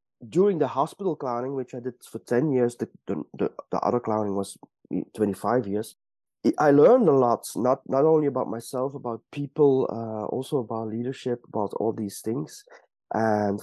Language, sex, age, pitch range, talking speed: English, male, 30-49, 110-145 Hz, 165 wpm